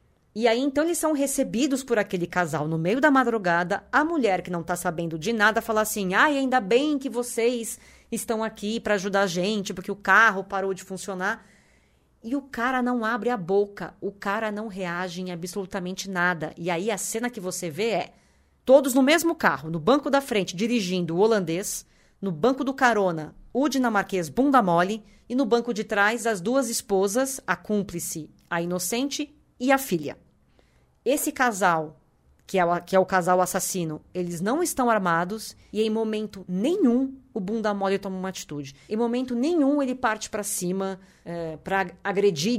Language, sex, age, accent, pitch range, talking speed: Portuguese, female, 20-39, Brazilian, 185-240 Hz, 180 wpm